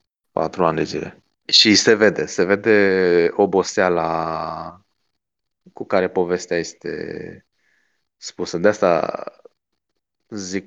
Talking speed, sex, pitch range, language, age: 100 wpm, male, 85-100 Hz, Romanian, 20-39